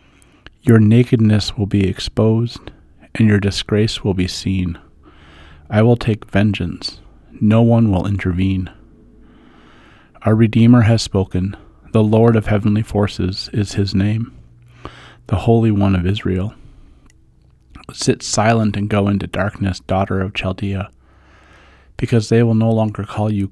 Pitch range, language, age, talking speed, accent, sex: 95-115 Hz, English, 40-59, 135 wpm, American, male